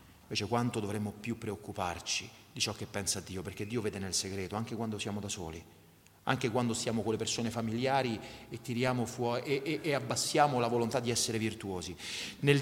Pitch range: 110-185 Hz